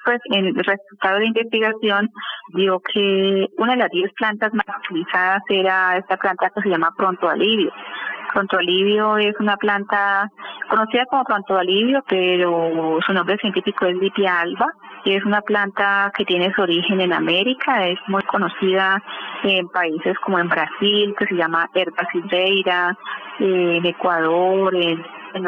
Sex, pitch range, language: female, 180-210 Hz, Spanish